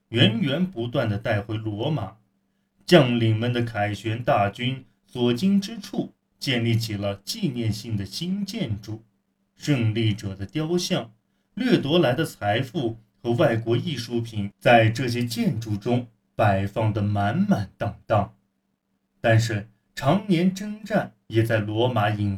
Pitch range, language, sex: 105-145 Hz, Chinese, male